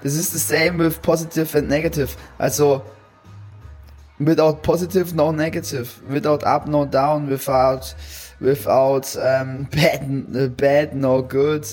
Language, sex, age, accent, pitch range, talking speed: English, male, 20-39, German, 130-150 Hz, 125 wpm